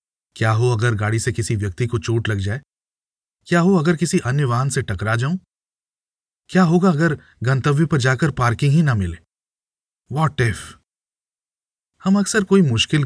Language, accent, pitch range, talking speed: Hindi, native, 110-145 Hz, 165 wpm